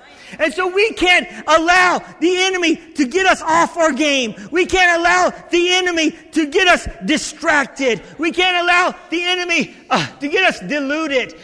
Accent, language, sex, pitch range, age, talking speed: American, English, male, 260-350 Hz, 40-59, 170 wpm